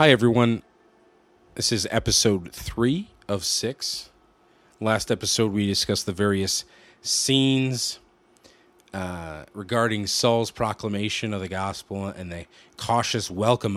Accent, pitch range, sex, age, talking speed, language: American, 95-120 Hz, male, 30-49, 115 wpm, English